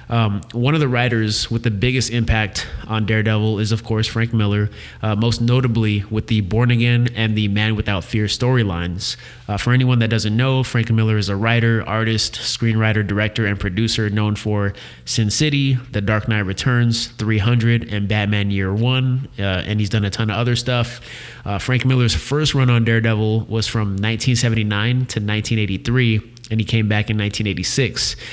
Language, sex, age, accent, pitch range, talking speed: English, male, 20-39, American, 105-120 Hz, 180 wpm